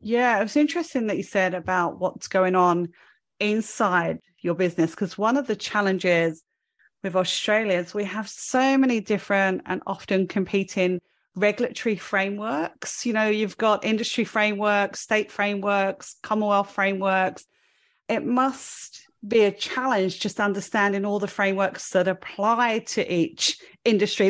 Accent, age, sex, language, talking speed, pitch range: British, 30-49, female, English, 140 wpm, 190-225 Hz